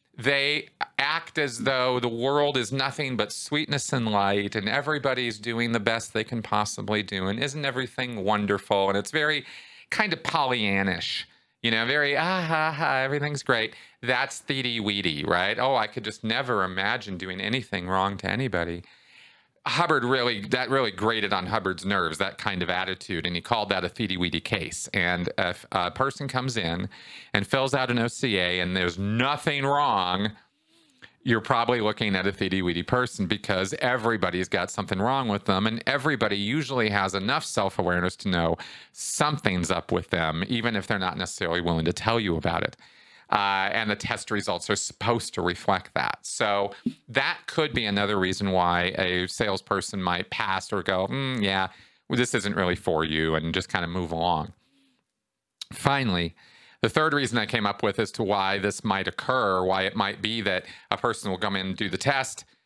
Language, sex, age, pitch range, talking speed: English, male, 40-59, 95-125 Hz, 185 wpm